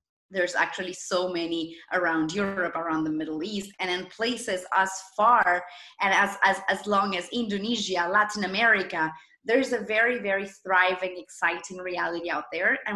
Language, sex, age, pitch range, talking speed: English, female, 20-39, 175-240 Hz, 155 wpm